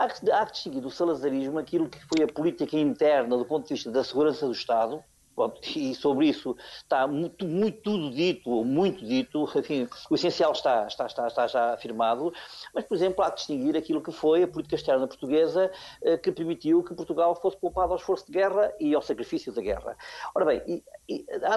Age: 50-69